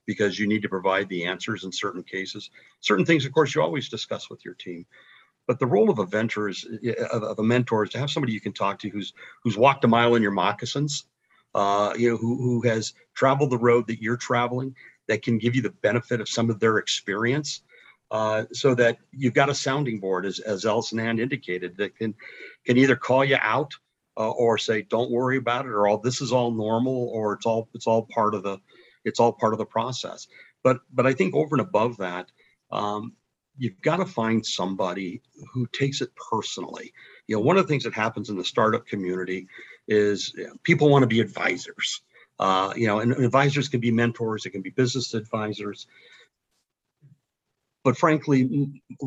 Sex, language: male, English